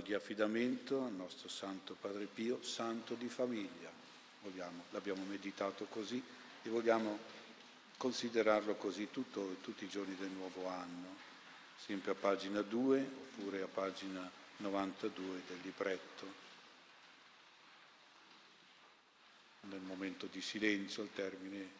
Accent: native